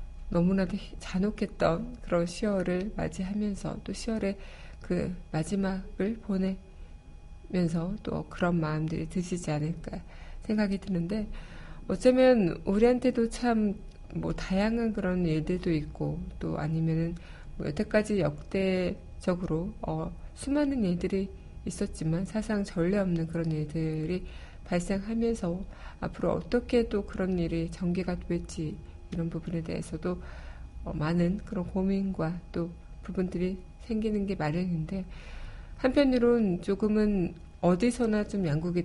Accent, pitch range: native, 165-205 Hz